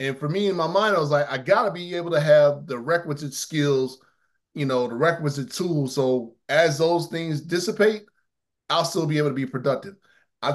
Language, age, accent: English, 20-39, American